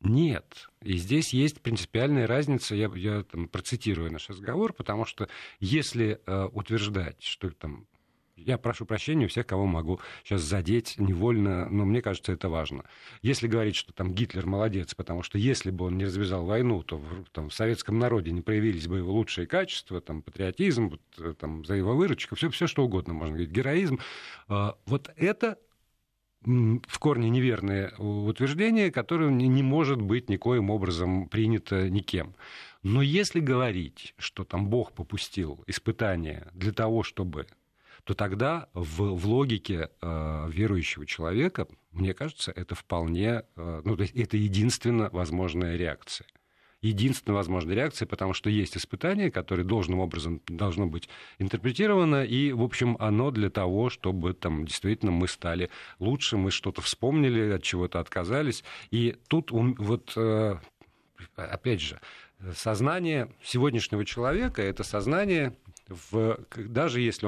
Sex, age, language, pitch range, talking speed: male, 50-69, Russian, 90-120 Hz, 145 wpm